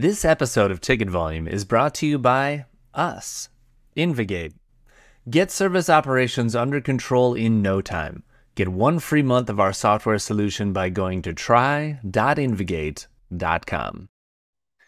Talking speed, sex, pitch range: 130 wpm, male, 95-125 Hz